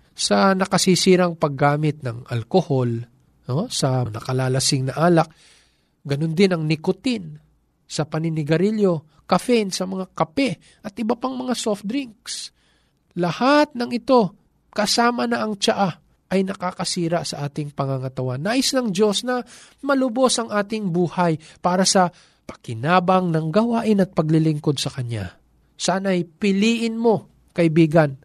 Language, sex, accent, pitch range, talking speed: Filipino, male, native, 150-220 Hz, 125 wpm